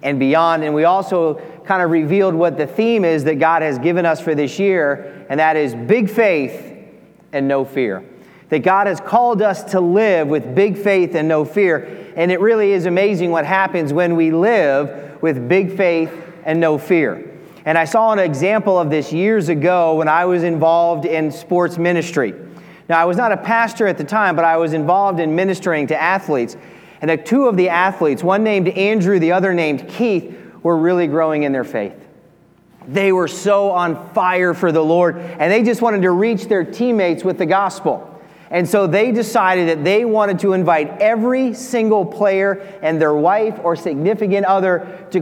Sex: male